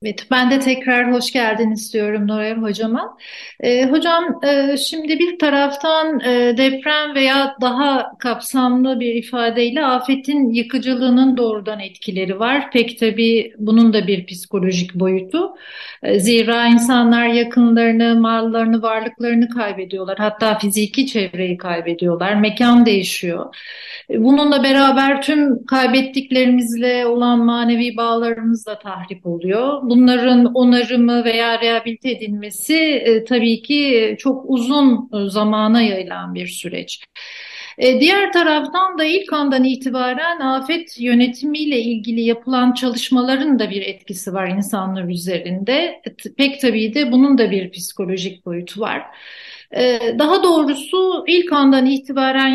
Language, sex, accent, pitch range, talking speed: Turkish, female, native, 225-275 Hz, 120 wpm